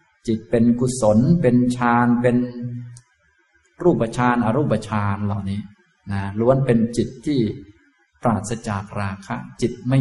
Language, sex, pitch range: Thai, male, 105-125 Hz